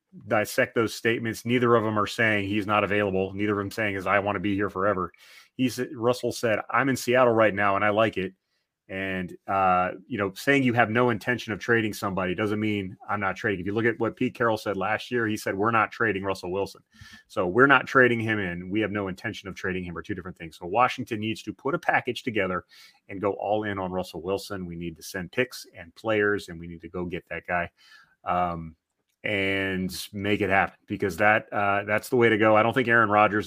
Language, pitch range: English, 95-110 Hz